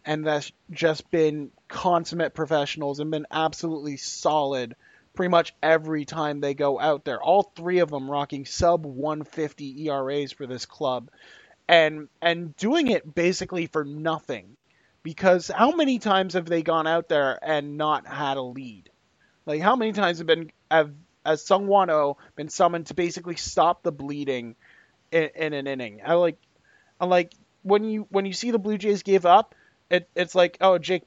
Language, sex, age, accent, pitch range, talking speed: English, male, 20-39, American, 145-180 Hz, 175 wpm